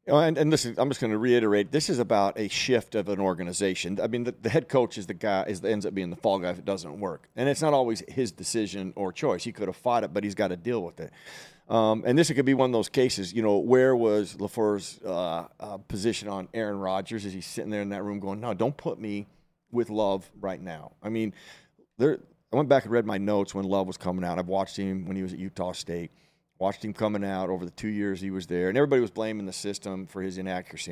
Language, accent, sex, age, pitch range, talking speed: English, American, male, 40-59, 95-115 Hz, 265 wpm